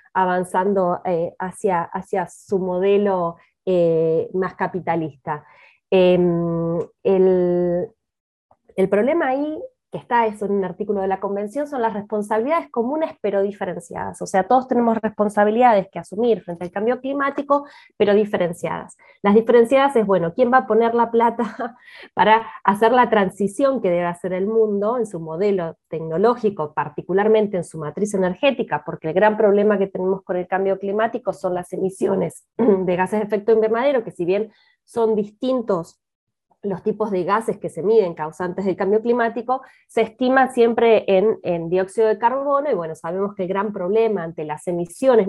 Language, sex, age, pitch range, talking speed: Spanish, female, 20-39, 175-225 Hz, 160 wpm